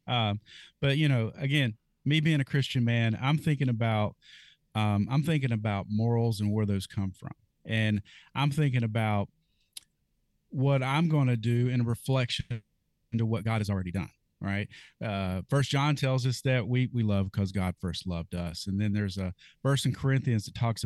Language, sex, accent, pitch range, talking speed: English, male, American, 105-135 Hz, 185 wpm